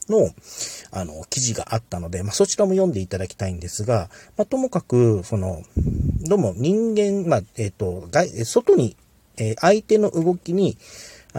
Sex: male